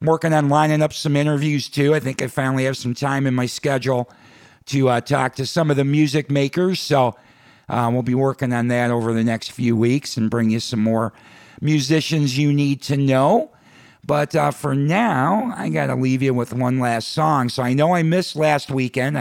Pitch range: 120-145 Hz